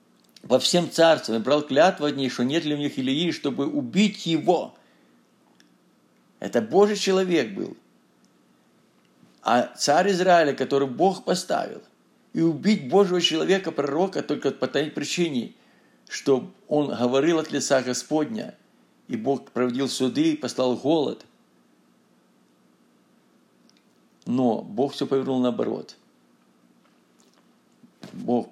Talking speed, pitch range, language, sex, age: 115 wpm, 110-155 Hz, Russian, male, 50-69